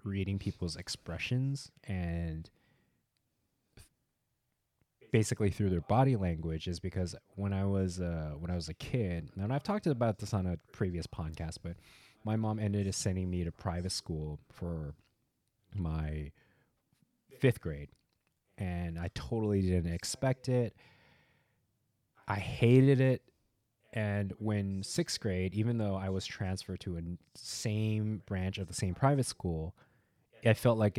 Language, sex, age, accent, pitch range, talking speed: English, male, 20-39, American, 90-115 Hz, 140 wpm